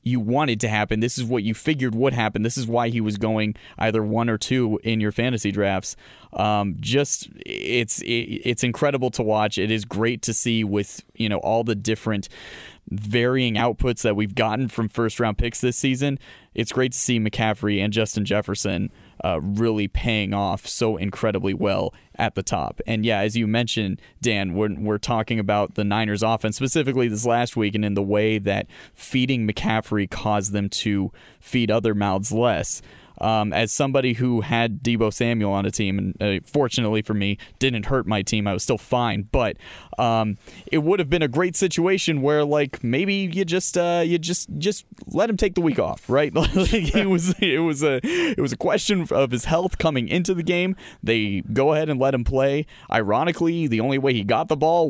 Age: 20-39